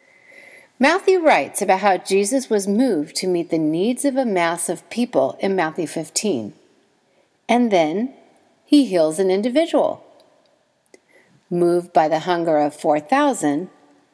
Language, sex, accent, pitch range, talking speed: English, female, American, 175-275 Hz, 130 wpm